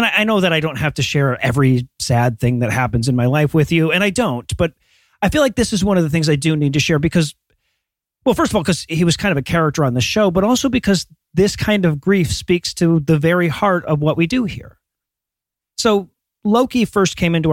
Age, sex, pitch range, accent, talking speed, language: 40-59, male, 145-185 Hz, American, 255 wpm, English